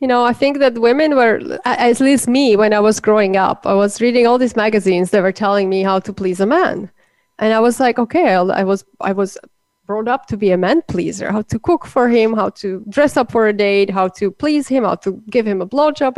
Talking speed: 250 wpm